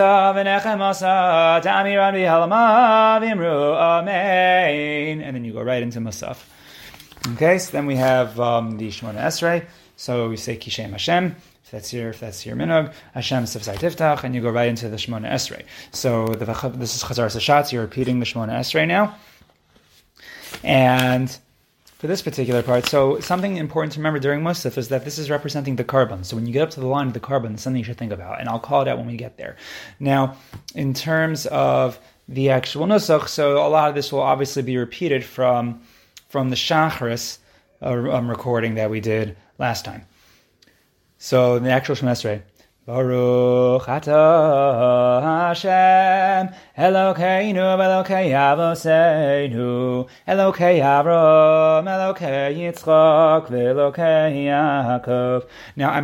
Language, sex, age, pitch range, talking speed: English, male, 20-39, 125-160 Hz, 135 wpm